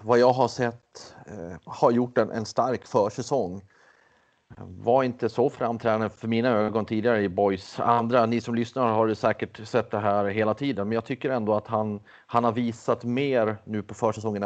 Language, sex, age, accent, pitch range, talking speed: Swedish, male, 30-49, native, 105-120 Hz, 190 wpm